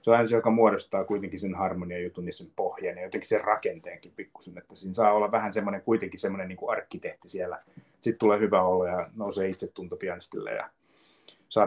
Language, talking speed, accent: Finnish, 190 wpm, native